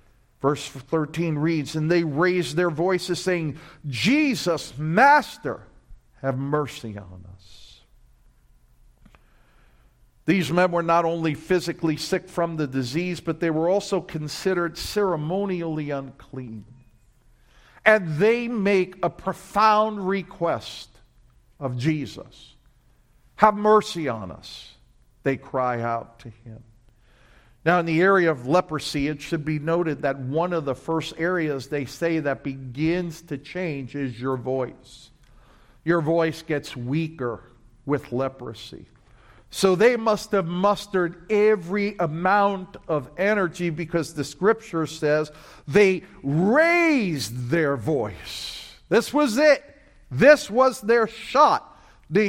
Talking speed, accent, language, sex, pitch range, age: 120 wpm, American, English, male, 135-190 Hz, 50-69